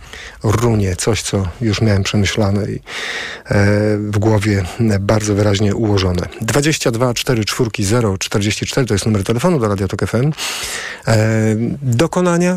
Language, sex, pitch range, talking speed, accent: Polish, male, 100-130 Hz, 125 wpm, native